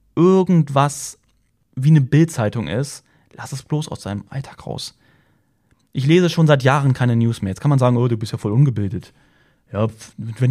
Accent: German